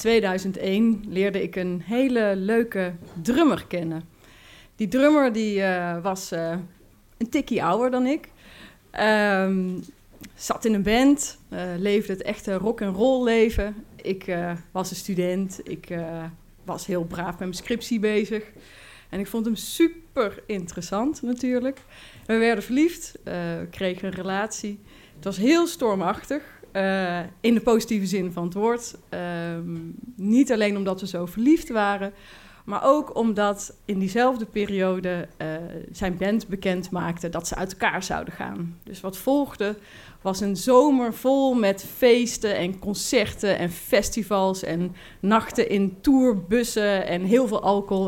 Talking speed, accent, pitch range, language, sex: 145 wpm, Dutch, 185-230 Hz, Dutch, female